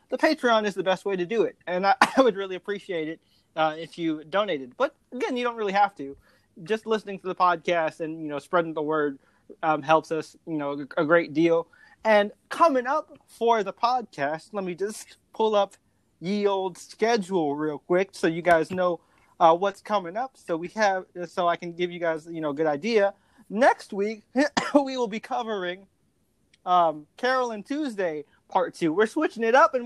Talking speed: 200 wpm